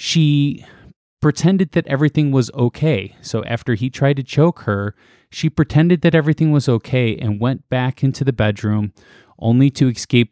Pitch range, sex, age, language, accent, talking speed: 105-125 Hz, male, 20-39, English, American, 165 wpm